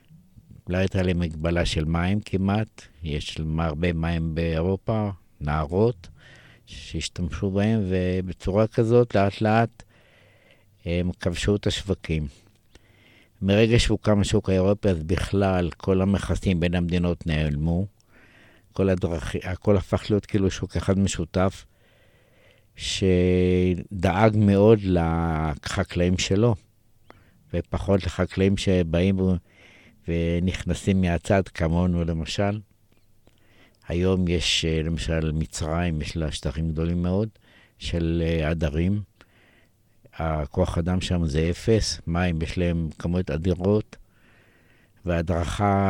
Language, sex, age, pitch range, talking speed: Hebrew, male, 60-79, 85-105 Hz, 95 wpm